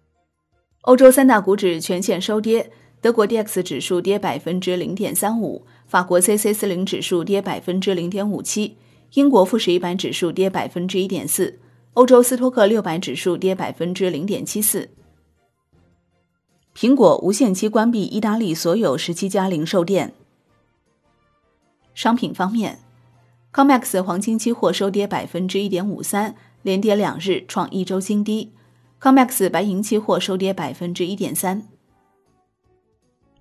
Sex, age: female, 30-49